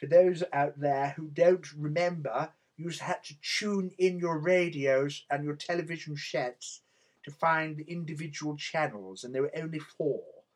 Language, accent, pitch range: English, British, 120-155 Hz